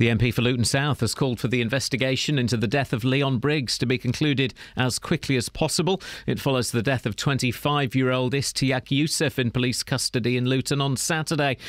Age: 40-59